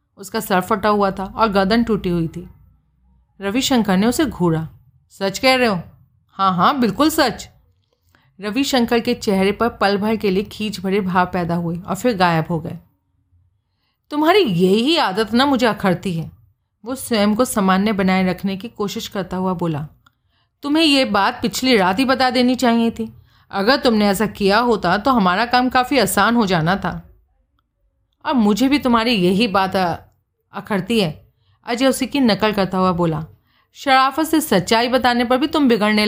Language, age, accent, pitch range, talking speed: Hindi, 40-59, native, 185-250 Hz, 175 wpm